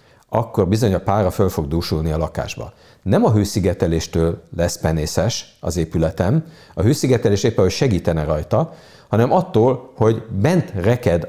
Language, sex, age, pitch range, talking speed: Hungarian, male, 50-69, 85-120 Hz, 145 wpm